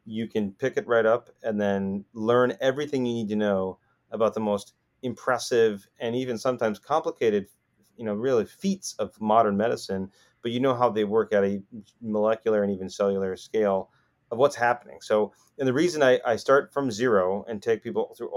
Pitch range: 100-125 Hz